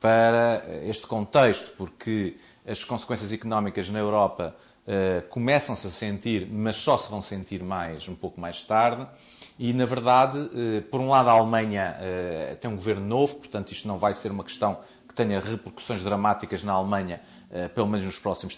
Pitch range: 100-130 Hz